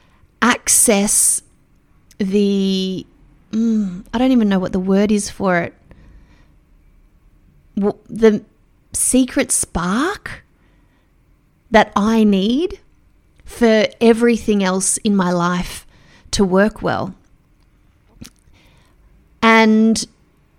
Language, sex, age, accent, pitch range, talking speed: English, female, 30-49, Australian, 180-245 Hz, 85 wpm